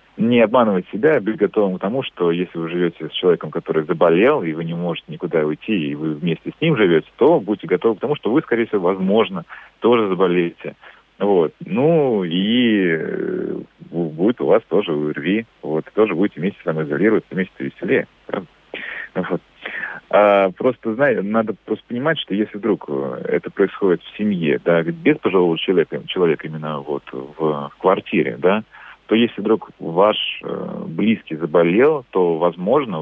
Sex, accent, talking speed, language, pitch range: male, native, 160 wpm, Russian, 80-110 Hz